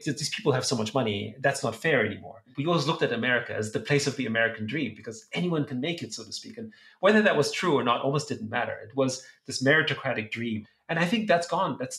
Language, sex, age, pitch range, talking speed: English, male, 30-49, 115-145 Hz, 255 wpm